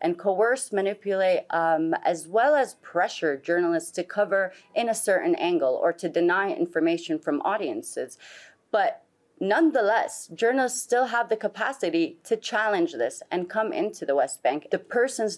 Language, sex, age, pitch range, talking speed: English, female, 30-49, 170-240 Hz, 150 wpm